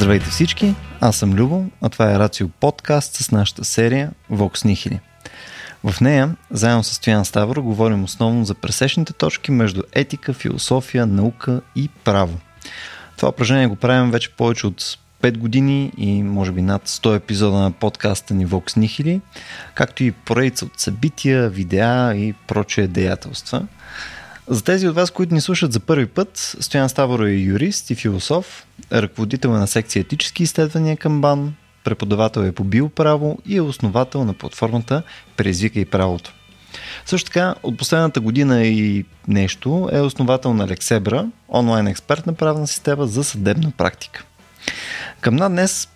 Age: 20-39